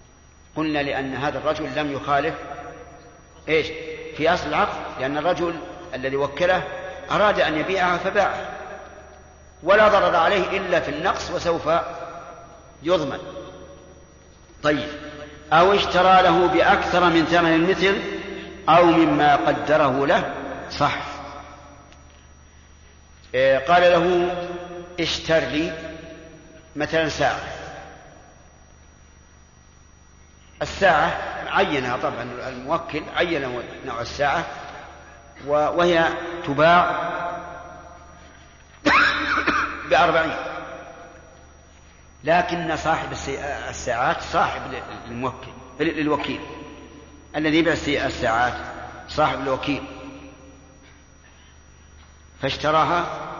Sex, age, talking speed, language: male, 50-69, 75 wpm, Arabic